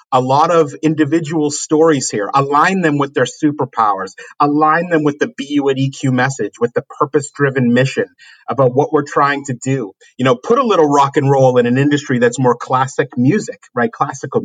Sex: male